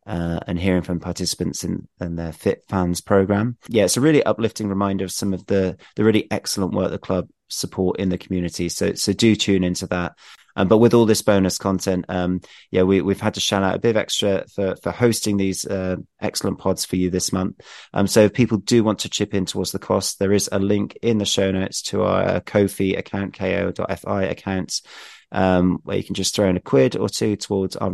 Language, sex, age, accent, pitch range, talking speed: English, male, 30-49, British, 90-105 Hz, 225 wpm